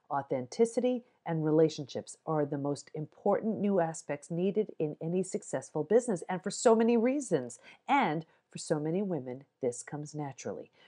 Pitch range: 160-235 Hz